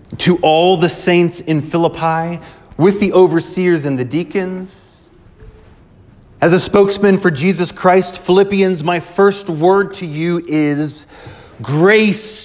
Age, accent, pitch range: 30-49, American, 140-200 Hz